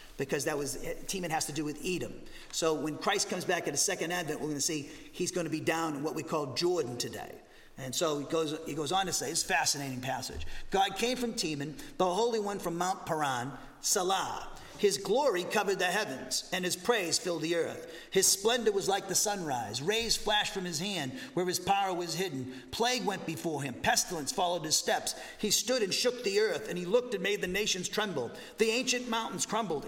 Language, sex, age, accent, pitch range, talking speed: English, male, 40-59, American, 175-225 Hz, 220 wpm